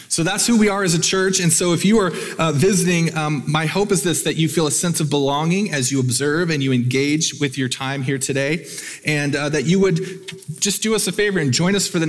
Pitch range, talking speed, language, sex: 130-170 Hz, 265 wpm, English, male